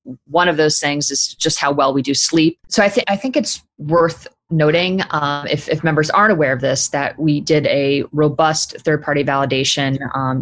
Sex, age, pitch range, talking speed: female, 20-39, 135-155 Hz, 200 wpm